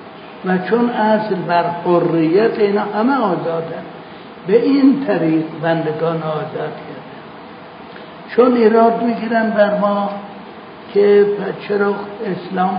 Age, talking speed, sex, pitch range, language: 60-79, 105 wpm, male, 170-215 Hz, Persian